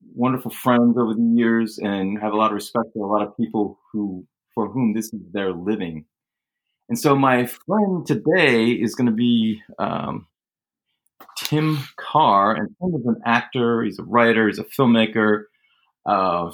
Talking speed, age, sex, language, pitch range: 165 wpm, 30-49, male, English, 105-125 Hz